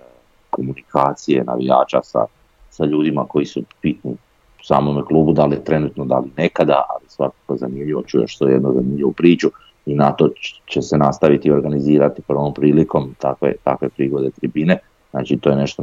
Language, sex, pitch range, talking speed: Croatian, male, 65-75 Hz, 170 wpm